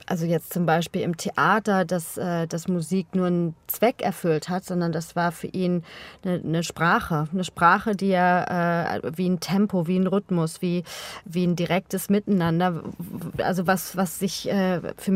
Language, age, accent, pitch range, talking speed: German, 30-49, German, 175-200 Hz, 175 wpm